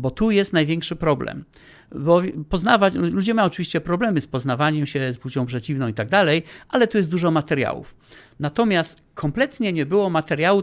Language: Polish